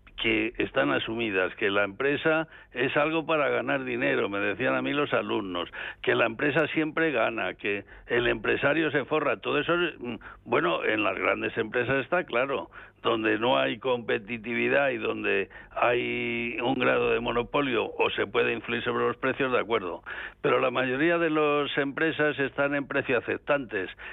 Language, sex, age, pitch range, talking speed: Spanish, male, 60-79, 120-150 Hz, 165 wpm